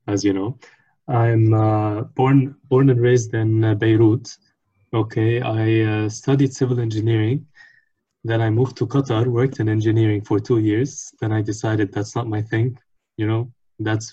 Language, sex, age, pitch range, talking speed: English, male, 20-39, 110-125 Hz, 160 wpm